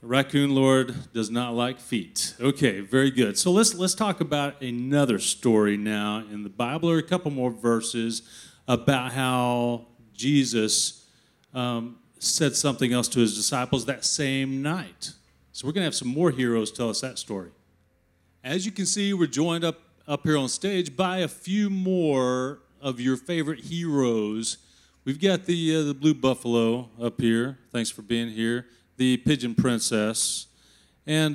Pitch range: 120-160 Hz